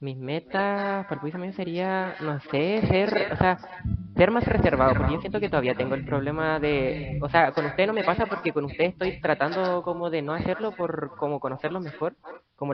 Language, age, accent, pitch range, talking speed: Spanish, 20-39, Spanish, 140-180 Hz, 205 wpm